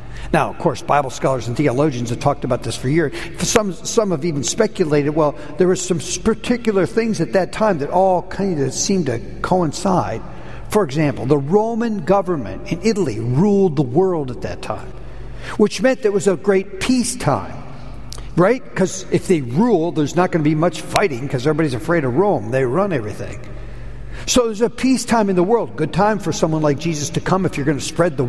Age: 60-79